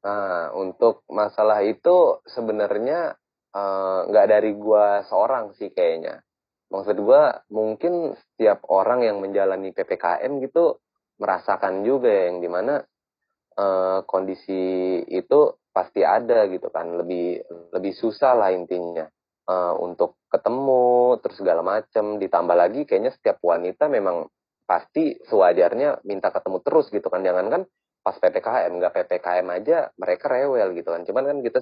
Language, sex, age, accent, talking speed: Indonesian, male, 20-39, native, 135 wpm